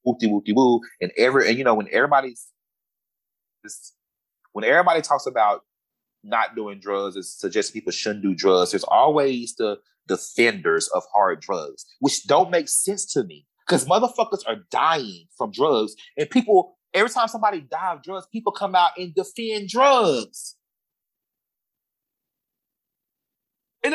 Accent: American